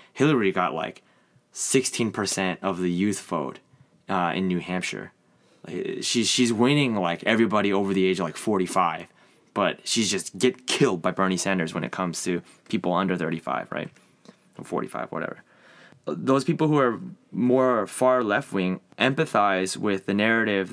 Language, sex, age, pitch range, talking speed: English, male, 20-39, 95-115 Hz, 155 wpm